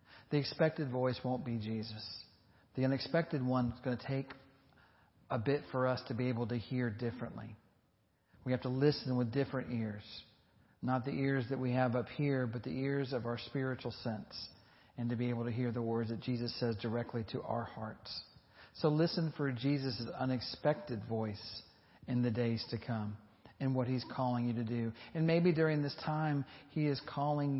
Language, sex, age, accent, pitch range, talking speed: English, male, 40-59, American, 115-135 Hz, 185 wpm